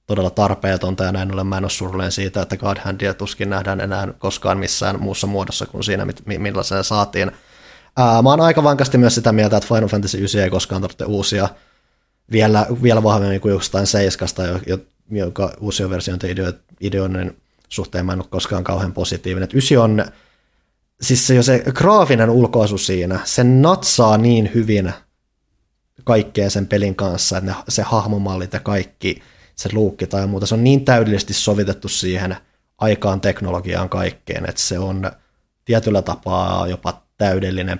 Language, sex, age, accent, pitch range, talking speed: Finnish, male, 20-39, native, 95-110 Hz, 160 wpm